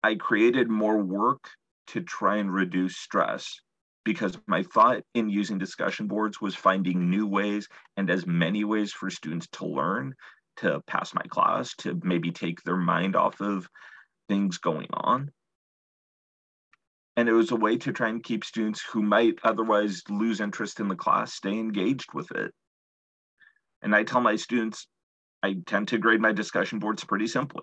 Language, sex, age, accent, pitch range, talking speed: English, male, 40-59, American, 90-110 Hz, 170 wpm